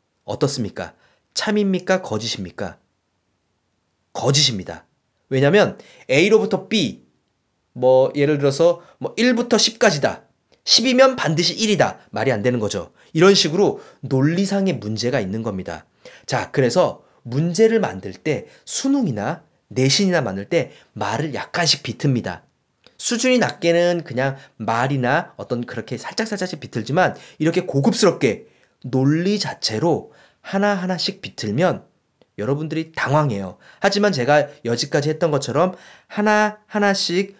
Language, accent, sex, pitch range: Korean, native, male, 125-195 Hz